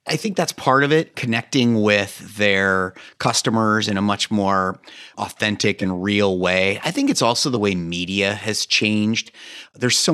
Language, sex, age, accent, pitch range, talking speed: English, male, 30-49, American, 100-125 Hz, 170 wpm